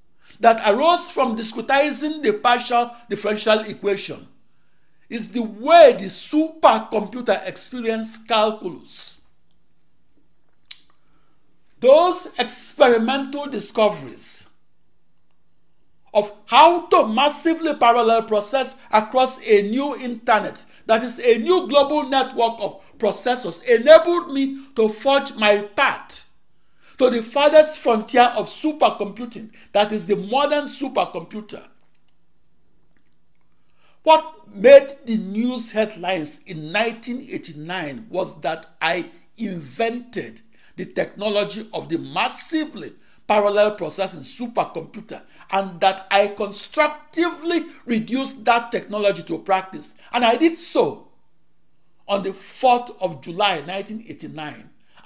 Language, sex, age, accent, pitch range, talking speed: English, male, 60-79, Nigerian, 210-280 Hz, 100 wpm